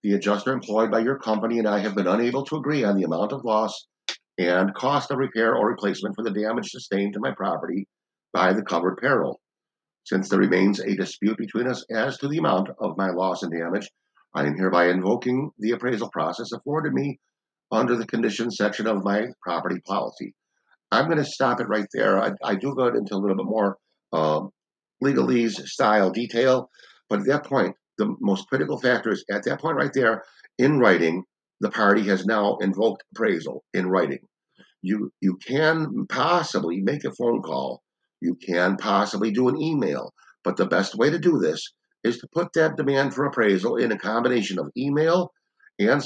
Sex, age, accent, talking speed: male, 50-69, American, 190 wpm